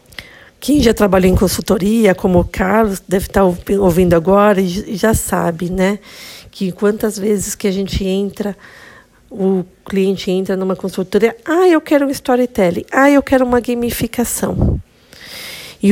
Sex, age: female, 50-69